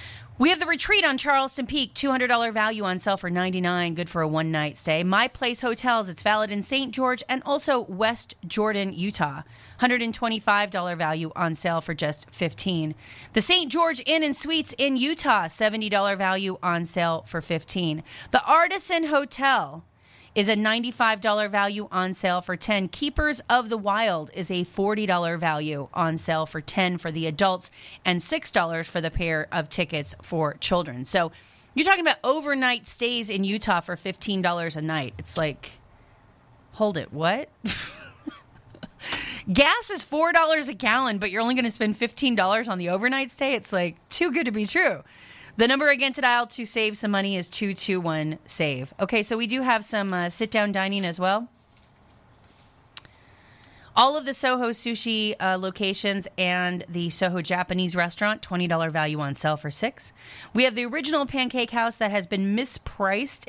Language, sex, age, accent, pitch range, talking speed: English, female, 30-49, American, 170-245 Hz, 165 wpm